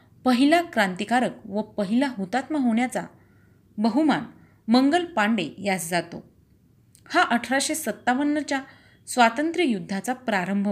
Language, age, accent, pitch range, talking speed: Marathi, 30-49, native, 190-265 Hz, 95 wpm